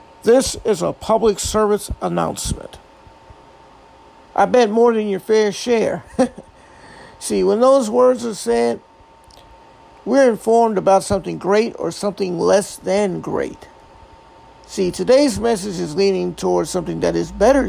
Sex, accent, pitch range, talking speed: male, American, 185-230 Hz, 130 wpm